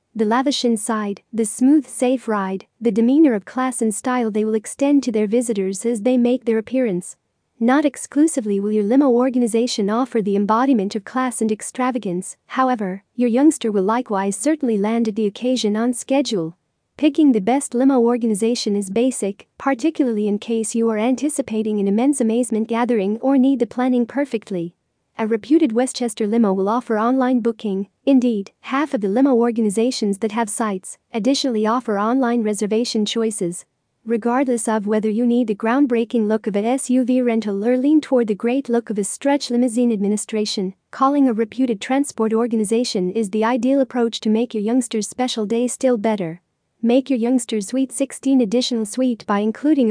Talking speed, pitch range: 170 wpm, 215-255 Hz